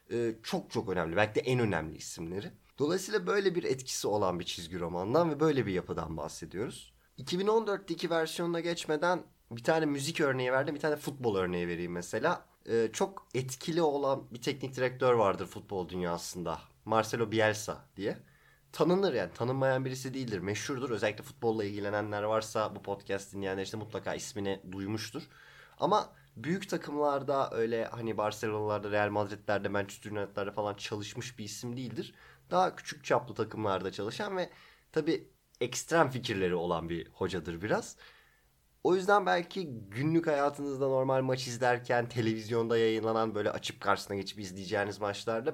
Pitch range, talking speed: 105-150 Hz, 140 wpm